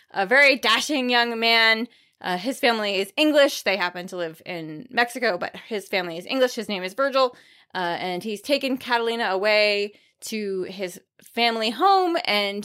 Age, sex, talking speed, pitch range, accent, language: 20-39, female, 170 wpm, 200-280 Hz, American, English